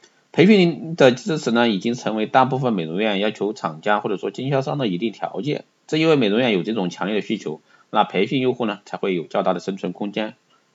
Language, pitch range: Chinese, 90-115 Hz